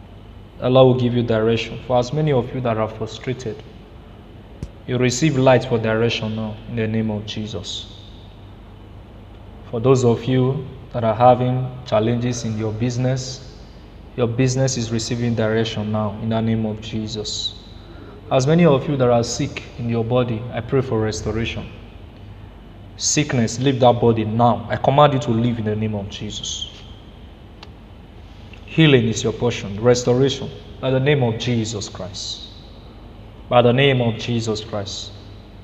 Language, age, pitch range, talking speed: English, 20-39, 105-125 Hz, 155 wpm